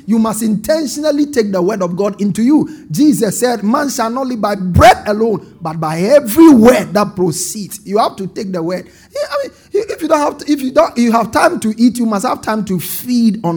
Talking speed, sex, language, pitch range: 245 wpm, male, English, 180-250 Hz